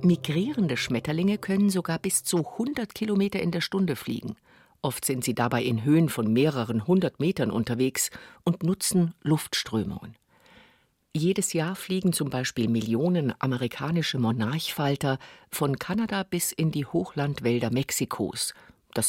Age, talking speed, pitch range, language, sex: 50-69, 130 wpm, 125-175 Hz, German, female